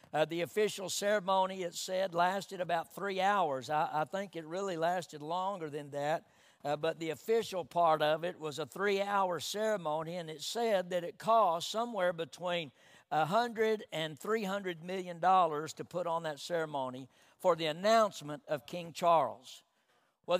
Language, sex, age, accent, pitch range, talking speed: English, male, 60-79, American, 165-200 Hz, 160 wpm